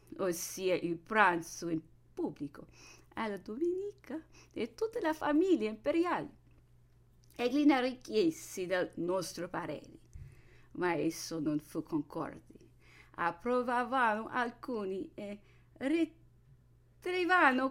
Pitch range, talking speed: 160-260 Hz, 90 wpm